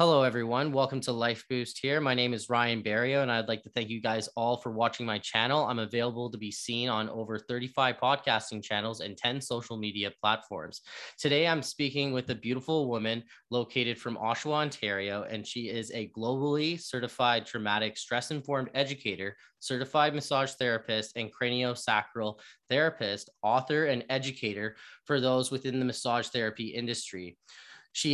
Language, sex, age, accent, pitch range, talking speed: English, male, 20-39, American, 110-135 Hz, 165 wpm